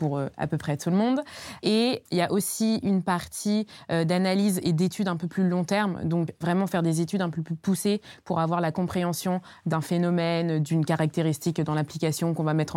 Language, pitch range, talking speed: French, 155-180 Hz, 205 wpm